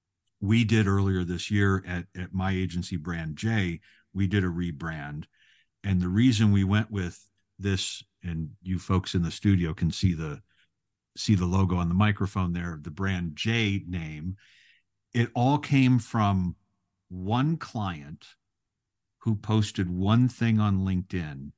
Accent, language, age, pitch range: American, English, 50-69, 90-105 Hz